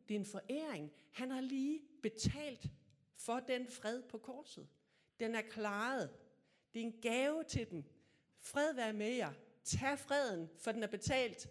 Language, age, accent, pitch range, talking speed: Danish, 60-79, native, 165-240 Hz, 165 wpm